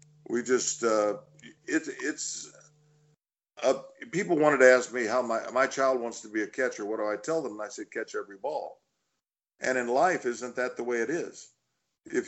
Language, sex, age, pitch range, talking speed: English, male, 50-69, 120-150 Hz, 200 wpm